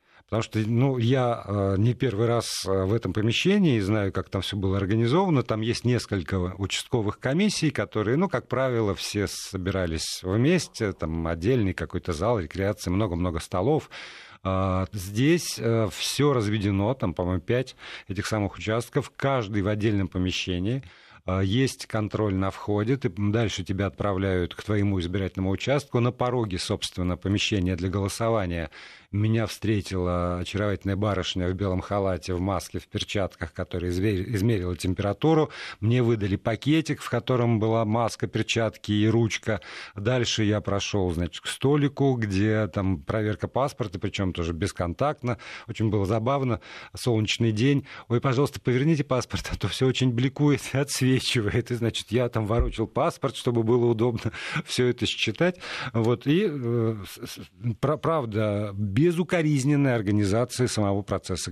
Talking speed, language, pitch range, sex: 135 wpm, Russian, 95-125 Hz, male